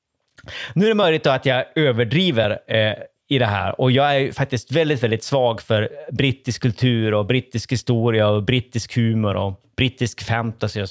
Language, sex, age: Swedish, male, 30-49